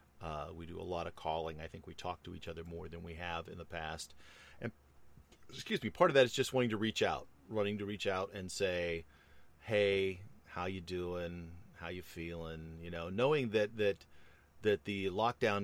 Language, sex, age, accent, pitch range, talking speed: English, male, 40-59, American, 80-90 Hz, 205 wpm